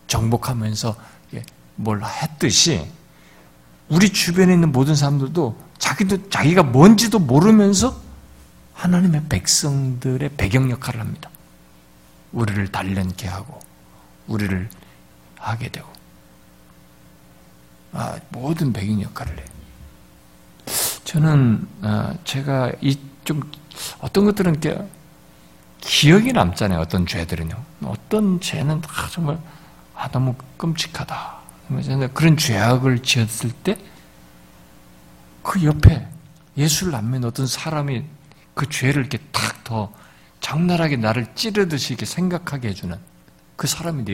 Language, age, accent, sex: Korean, 50-69, native, male